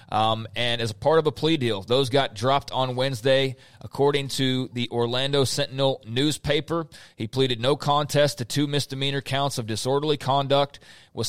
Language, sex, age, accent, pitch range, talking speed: English, male, 30-49, American, 120-145 Hz, 165 wpm